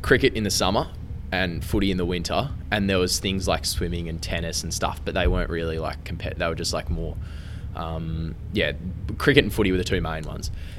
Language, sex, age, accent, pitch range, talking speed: English, male, 20-39, Australian, 85-95 Hz, 220 wpm